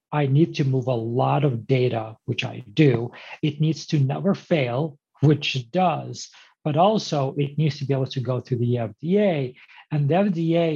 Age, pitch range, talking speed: 40-59, 125-155 Hz, 190 wpm